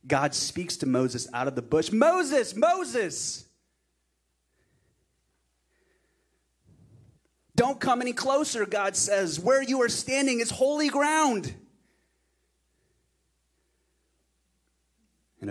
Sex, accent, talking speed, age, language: male, American, 95 wpm, 30-49, English